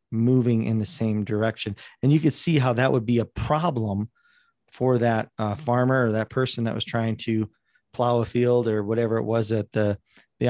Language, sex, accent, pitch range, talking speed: English, male, American, 110-130 Hz, 205 wpm